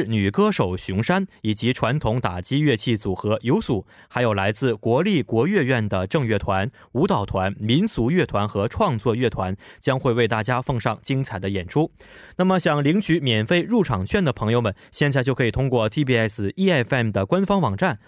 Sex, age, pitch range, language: male, 20-39, 110-160 Hz, Korean